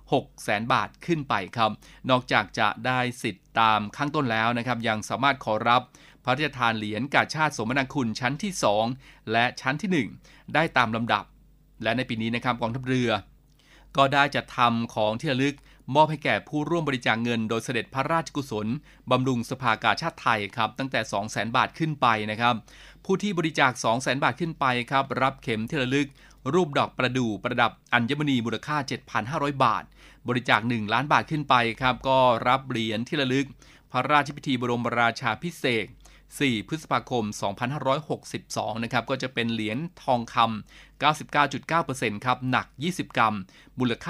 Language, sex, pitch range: Thai, male, 115-145 Hz